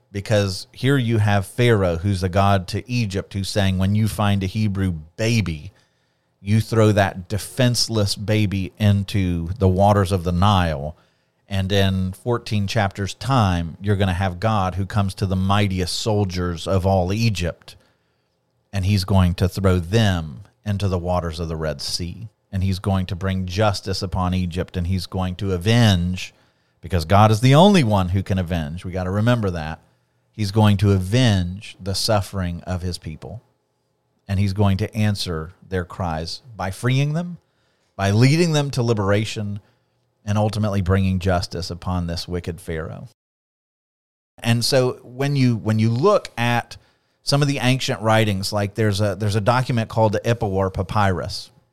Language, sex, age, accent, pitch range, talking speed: English, male, 40-59, American, 95-110 Hz, 165 wpm